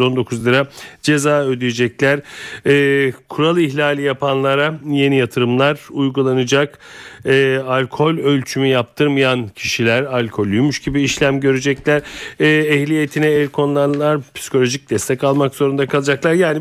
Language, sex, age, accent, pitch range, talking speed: Turkish, male, 40-59, native, 130-160 Hz, 110 wpm